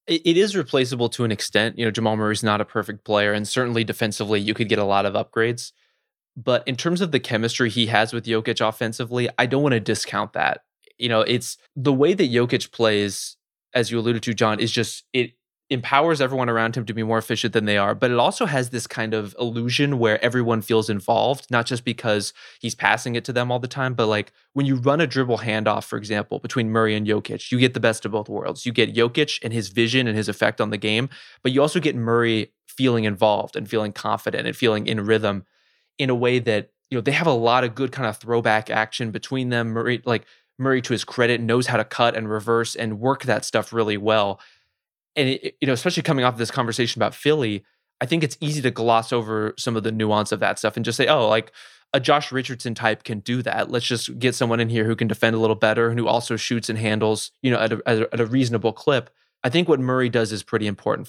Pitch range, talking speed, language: 110-125 Hz, 240 wpm, English